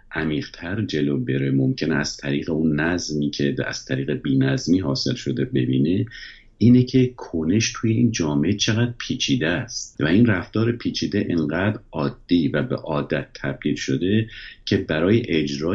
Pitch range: 75-110 Hz